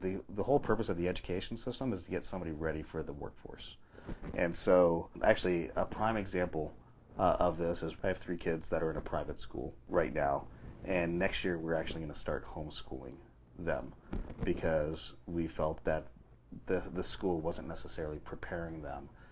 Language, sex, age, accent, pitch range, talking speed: English, male, 30-49, American, 75-90 Hz, 185 wpm